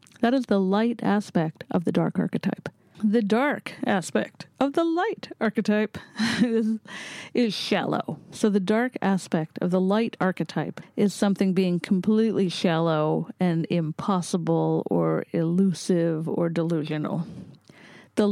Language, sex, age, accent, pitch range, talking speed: English, female, 40-59, American, 175-225 Hz, 130 wpm